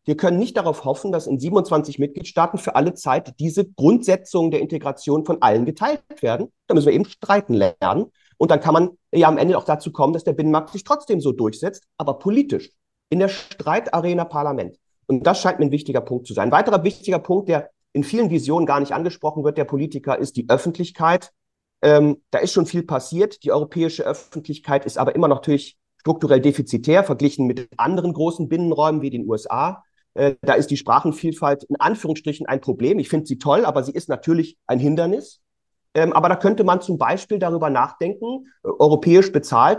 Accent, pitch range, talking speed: German, 145-185 Hz, 190 wpm